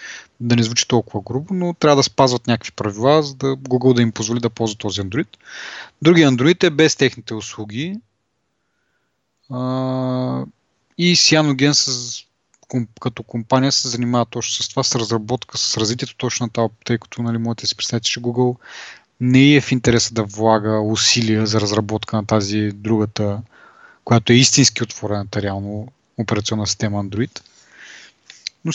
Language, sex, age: Bulgarian, male, 20-39